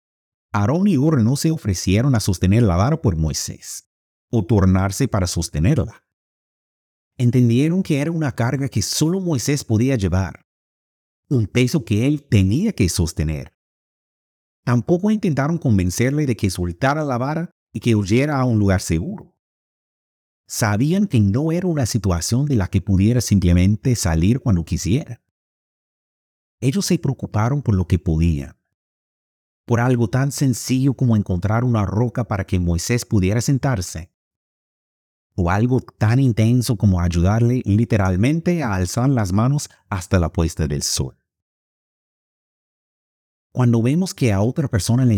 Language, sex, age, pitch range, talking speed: Spanish, male, 50-69, 95-130 Hz, 140 wpm